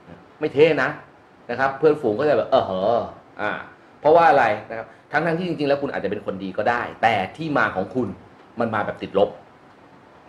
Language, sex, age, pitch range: Thai, male, 30-49, 120-180 Hz